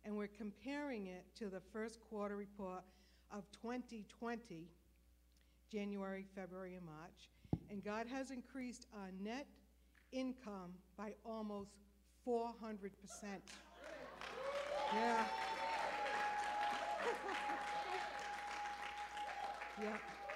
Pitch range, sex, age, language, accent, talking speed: 195-250 Hz, female, 60-79, English, American, 85 wpm